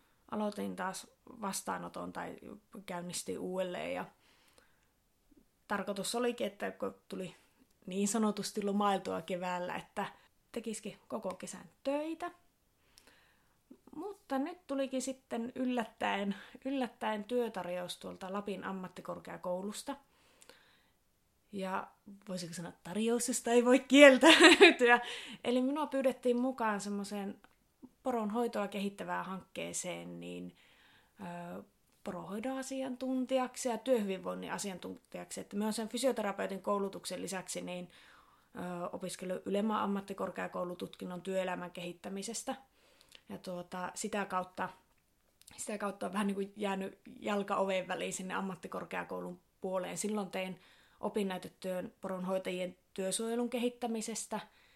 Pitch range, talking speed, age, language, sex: 185-245 Hz, 90 wpm, 30-49, Finnish, female